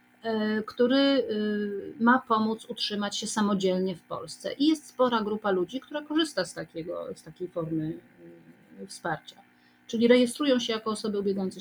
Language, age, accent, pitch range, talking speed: Polish, 40-59, native, 195-235 Hz, 140 wpm